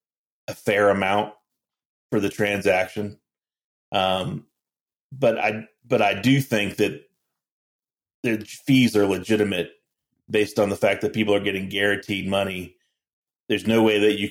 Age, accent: 30-49, American